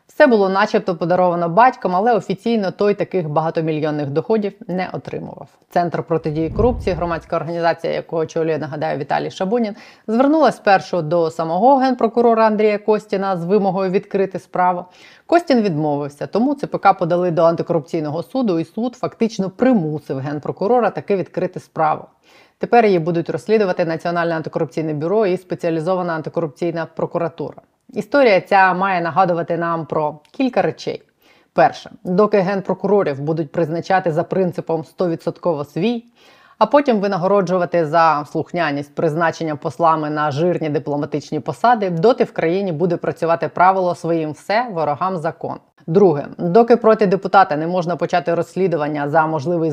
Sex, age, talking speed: female, 30-49, 130 wpm